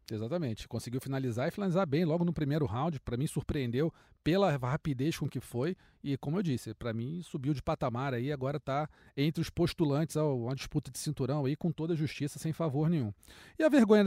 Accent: Brazilian